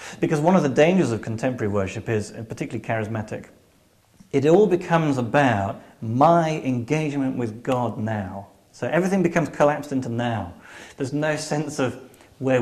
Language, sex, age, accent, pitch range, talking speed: English, male, 40-59, British, 115-160 Hz, 145 wpm